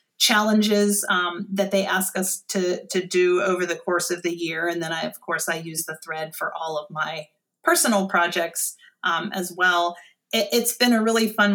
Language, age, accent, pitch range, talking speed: English, 30-49, American, 170-205 Hz, 200 wpm